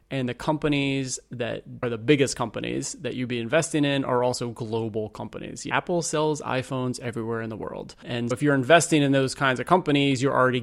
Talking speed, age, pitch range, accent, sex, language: 200 wpm, 30-49, 120-150 Hz, American, male, English